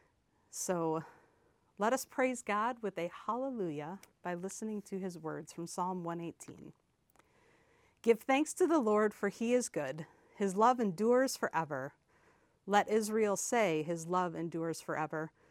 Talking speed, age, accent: 140 wpm, 40-59, American